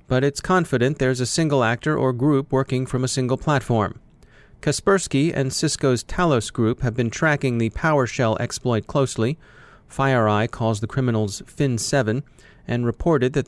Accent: American